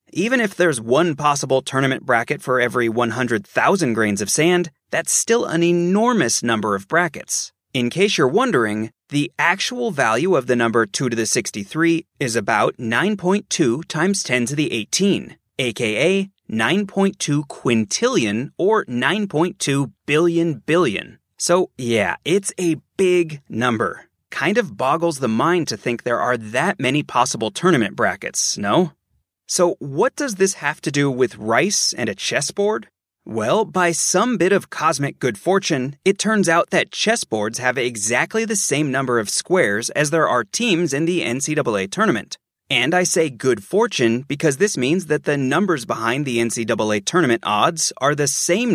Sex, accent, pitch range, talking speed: male, American, 120-180 Hz, 160 wpm